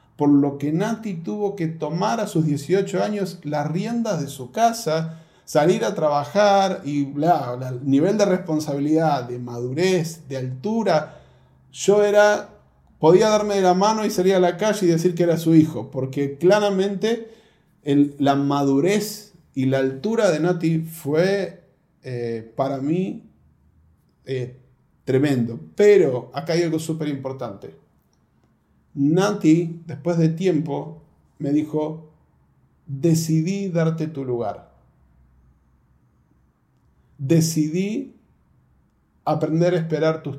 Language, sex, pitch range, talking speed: Spanish, male, 135-180 Hz, 120 wpm